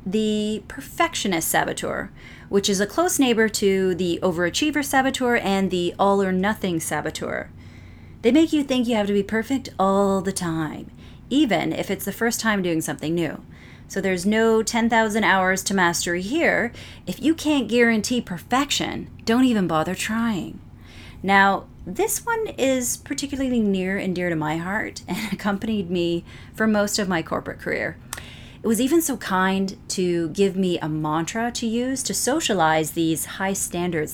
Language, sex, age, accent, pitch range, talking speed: English, female, 30-49, American, 175-230 Hz, 165 wpm